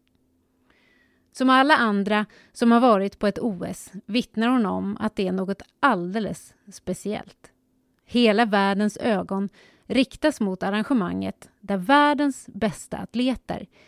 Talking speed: 120 wpm